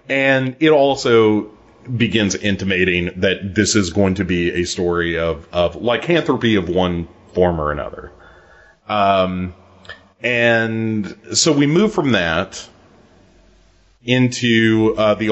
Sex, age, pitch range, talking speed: male, 30-49, 90-120 Hz, 120 wpm